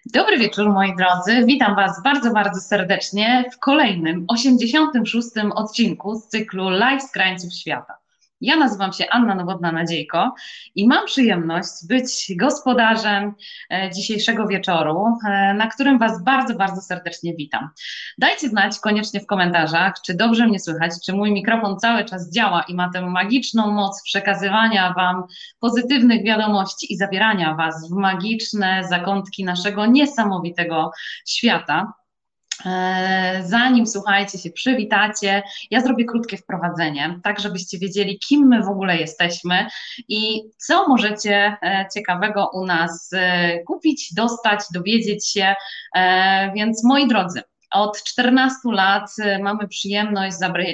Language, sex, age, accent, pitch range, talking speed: Polish, female, 20-39, native, 185-225 Hz, 125 wpm